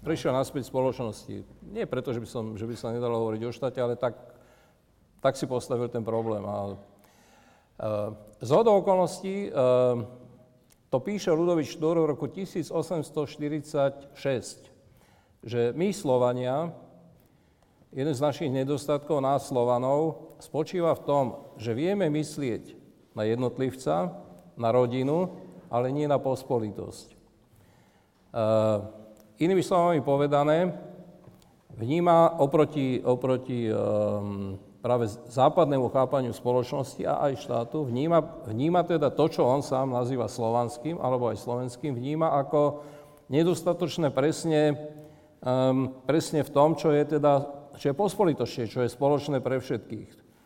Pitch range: 125-155 Hz